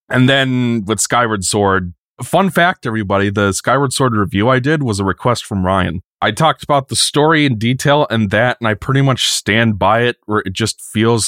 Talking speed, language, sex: 205 wpm, English, male